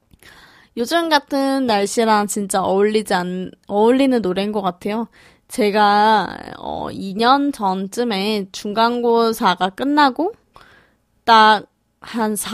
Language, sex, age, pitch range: Korean, female, 20-39, 200-240 Hz